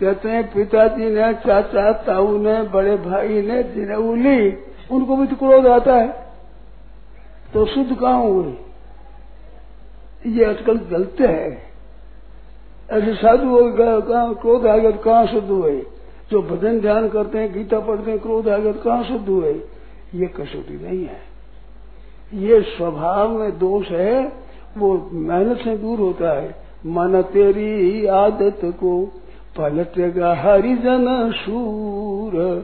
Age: 60-79